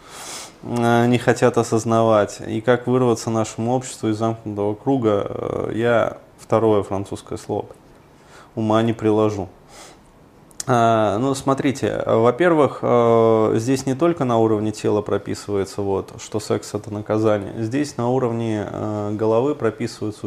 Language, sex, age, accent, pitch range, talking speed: Russian, male, 20-39, native, 105-125 Hz, 110 wpm